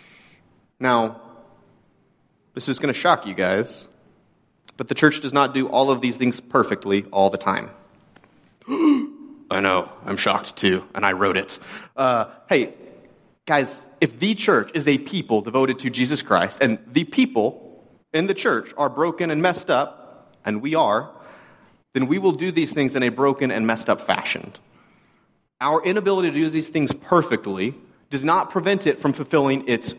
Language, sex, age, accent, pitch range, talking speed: English, male, 30-49, American, 120-160 Hz, 170 wpm